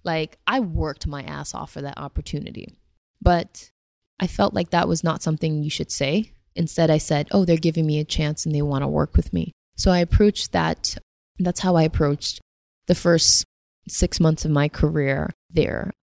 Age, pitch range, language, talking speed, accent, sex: 20-39, 150-180 Hz, English, 195 wpm, American, female